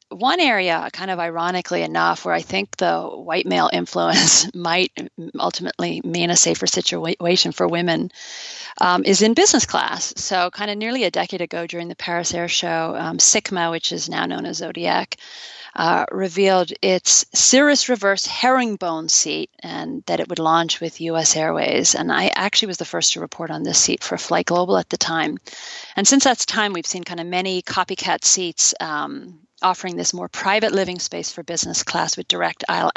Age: 40-59